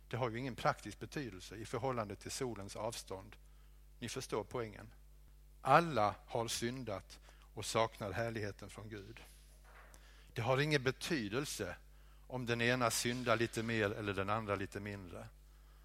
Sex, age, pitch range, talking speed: male, 60-79, 95-120 Hz, 140 wpm